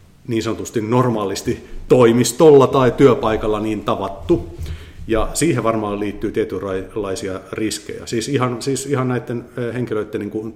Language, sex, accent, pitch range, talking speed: Finnish, male, native, 95-115 Hz, 125 wpm